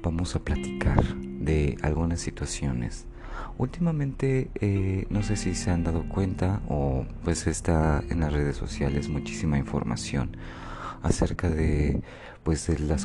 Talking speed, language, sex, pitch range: 135 wpm, Spanish, male, 70-90 Hz